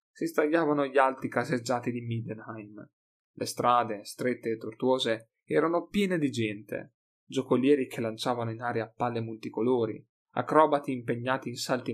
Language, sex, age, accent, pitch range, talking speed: Italian, male, 30-49, native, 115-150 Hz, 135 wpm